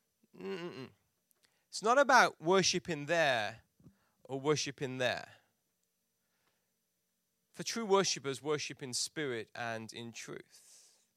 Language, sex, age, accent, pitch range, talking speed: English, male, 30-49, British, 180-245 Hz, 100 wpm